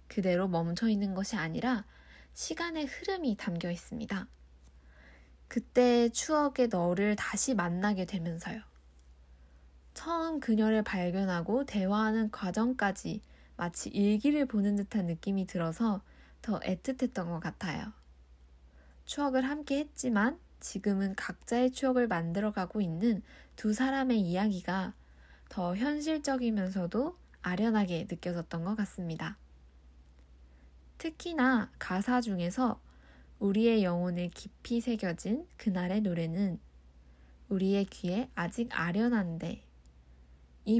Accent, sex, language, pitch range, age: native, female, Korean, 170-235 Hz, 10-29